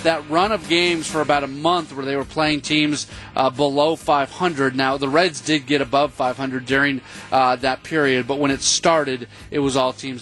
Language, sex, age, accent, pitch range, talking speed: English, male, 30-49, American, 135-160 Hz, 205 wpm